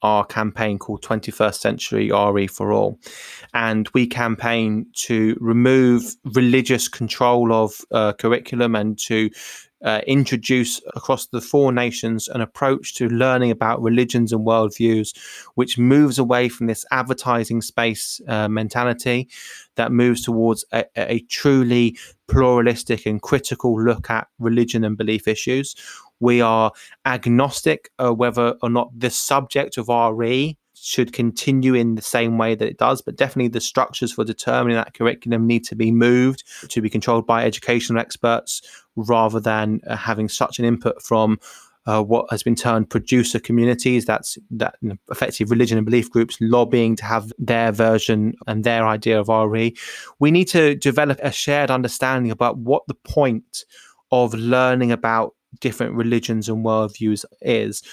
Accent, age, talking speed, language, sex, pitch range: British, 20-39, 155 wpm, English, male, 110-125 Hz